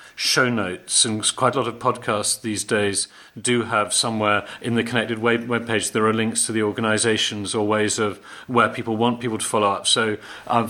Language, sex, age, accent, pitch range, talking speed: English, male, 40-59, British, 105-115 Hz, 200 wpm